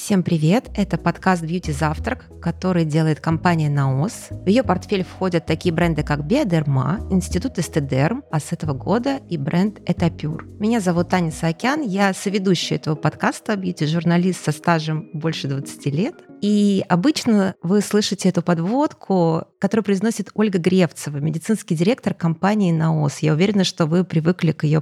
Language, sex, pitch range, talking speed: Russian, female, 155-190 Hz, 150 wpm